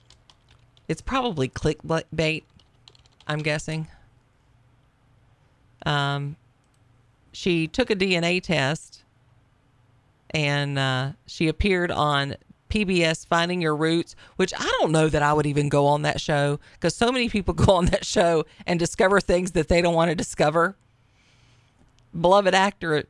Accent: American